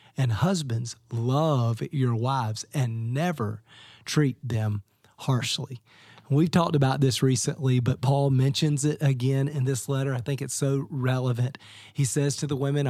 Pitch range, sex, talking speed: 130-150 Hz, male, 155 wpm